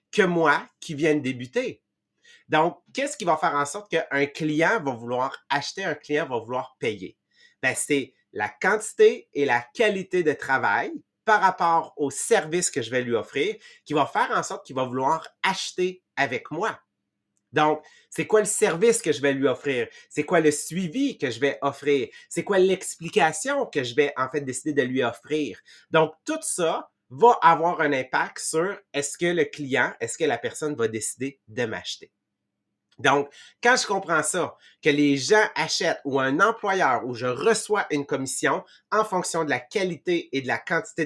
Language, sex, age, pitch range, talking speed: English, male, 30-49, 140-190 Hz, 185 wpm